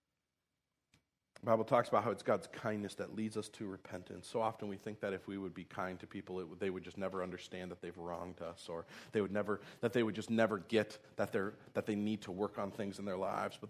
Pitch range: 105-160 Hz